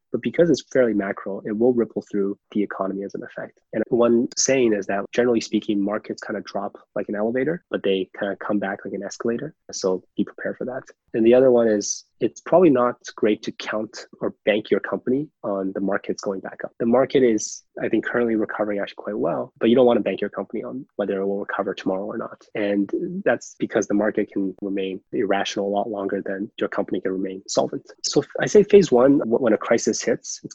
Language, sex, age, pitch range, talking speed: English, male, 20-39, 100-115 Hz, 230 wpm